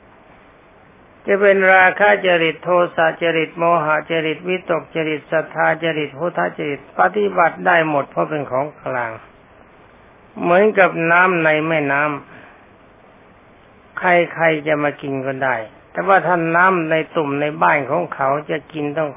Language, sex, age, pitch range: Thai, male, 60-79, 145-180 Hz